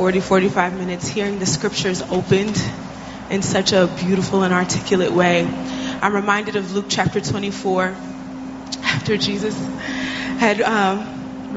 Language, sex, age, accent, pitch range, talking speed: English, female, 20-39, American, 195-230 Hz, 120 wpm